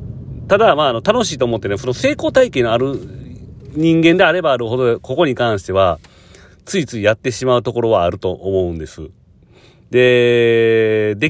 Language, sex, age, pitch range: Japanese, male, 40-59, 95-125 Hz